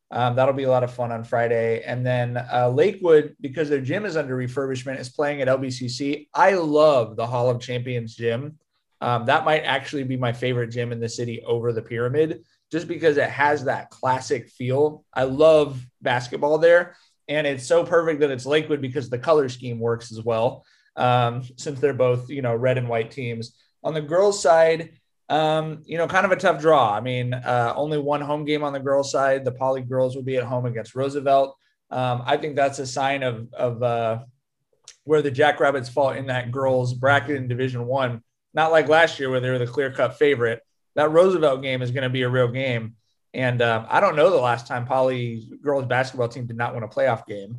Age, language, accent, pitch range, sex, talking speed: 20-39, English, American, 120-145 Hz, male, 215 wpm